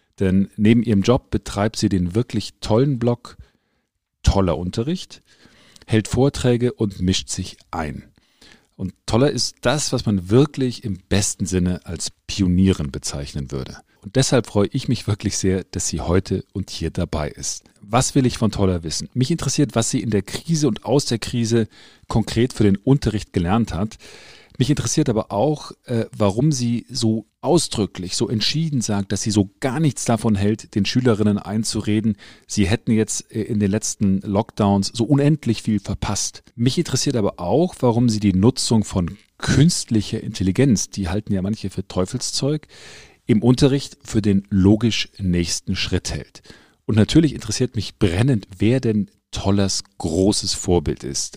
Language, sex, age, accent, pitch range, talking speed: German, male, 40-59, German, 95-120 Hz, 160 wpm